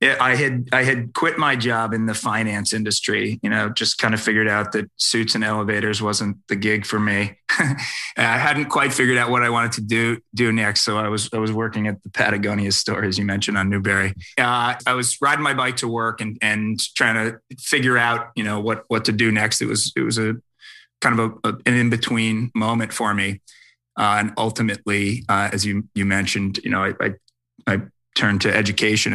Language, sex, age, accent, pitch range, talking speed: English, male, 30-49, American, 105-120 Hz, 215 wpm